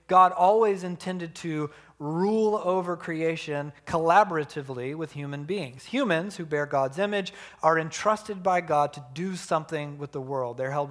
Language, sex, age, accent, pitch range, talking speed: English, male, 40-59, American, 150-195 Hz, 155 wpm